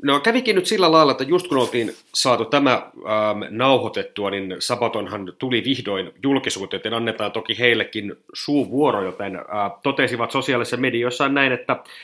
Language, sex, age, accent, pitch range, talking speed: Finnish, male, 30-49, native, 110-135 Hz, 150 wpm